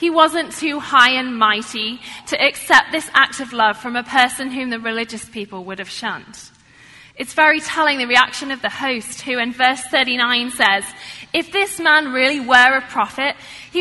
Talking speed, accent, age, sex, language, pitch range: 185 wpm, British, 10-29, female, English, 225-305 Hz